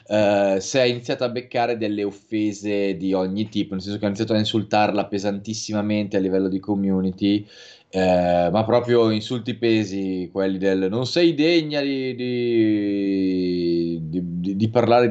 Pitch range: 95-115 Hz